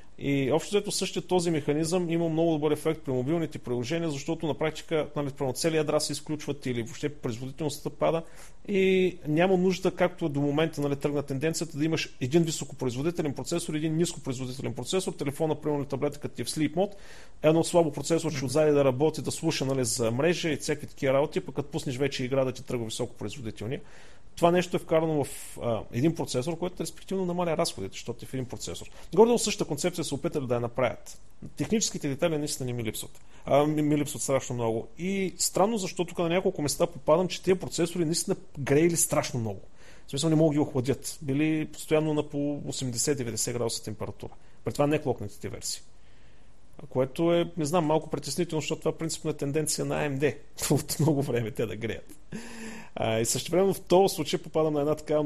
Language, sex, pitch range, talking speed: Bulgarian, male, 135-165 Hz, 190 wpm